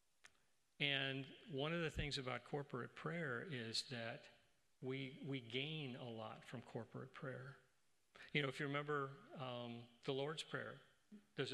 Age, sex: 40-59, male